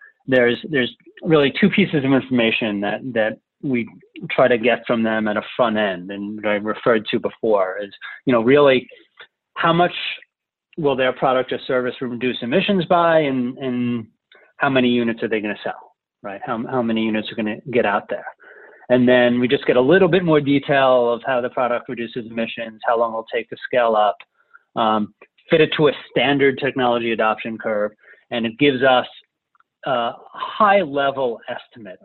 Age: 30-49